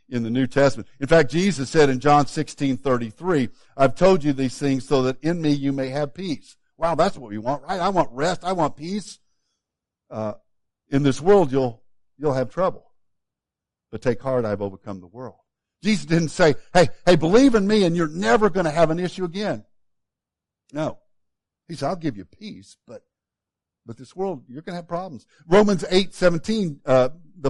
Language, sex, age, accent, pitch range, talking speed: English, male, 60-79, American, 130-190 Hz, 190 wpm